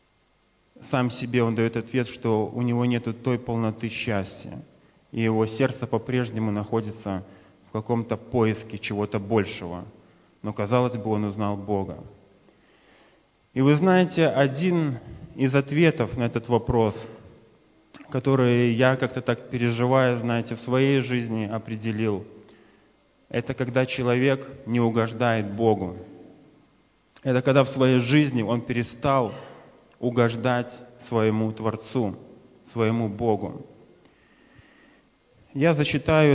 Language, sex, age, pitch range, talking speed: Russian, male, 20-39, 110-130 Hz, 110 wpm